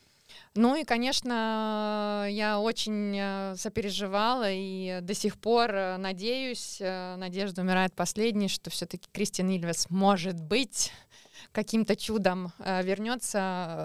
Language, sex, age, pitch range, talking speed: Russian, female, 20-39, 175-205 Hz, 100 wpm